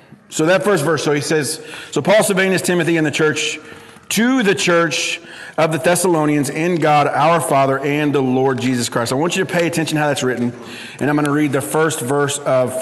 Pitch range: 140-170 Hz